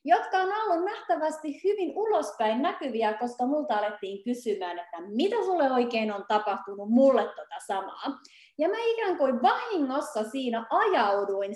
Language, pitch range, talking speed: Finnish, 210-285 Hz, 140 wpm